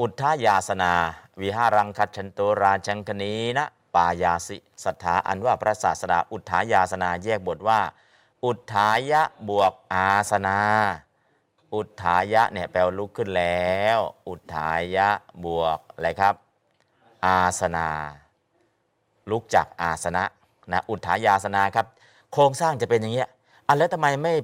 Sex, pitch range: male, 90-120 Hz